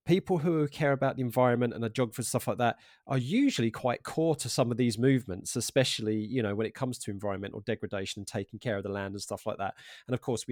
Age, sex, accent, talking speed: 30-49, male, British, 255 wpm